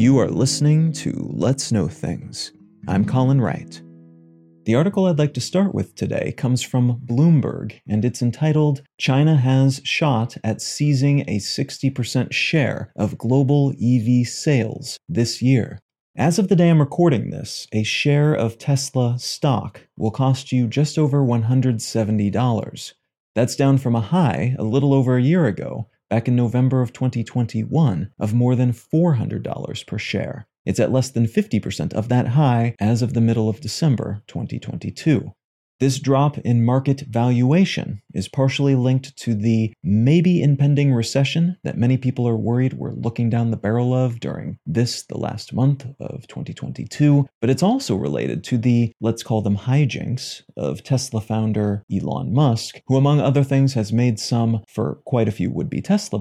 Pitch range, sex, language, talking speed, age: 115-140 Hz, male, English, 160 wpm, 30-49